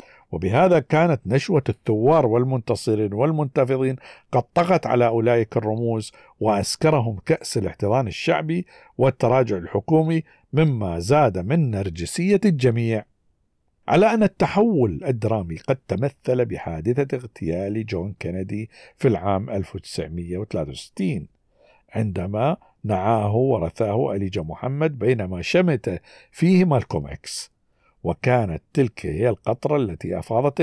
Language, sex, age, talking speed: Arabic, male, 50-69, 100 wpm